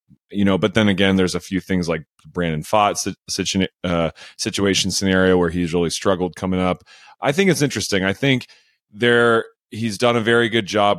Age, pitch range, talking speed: 30-49, 90-115 Hz, 180 wpm